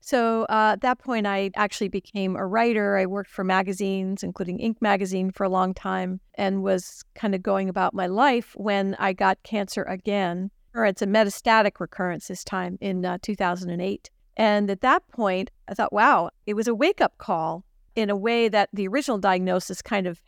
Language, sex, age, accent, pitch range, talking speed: English, female, 50-69, American, 190-235 Hz, 190 wpm